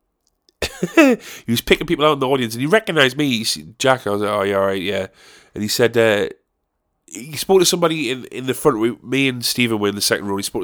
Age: 30-49